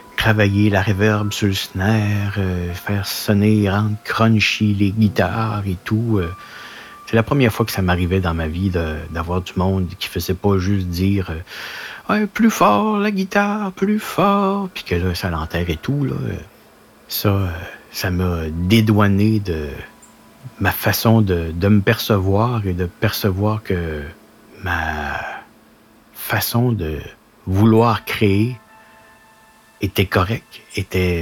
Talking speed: 145 wpm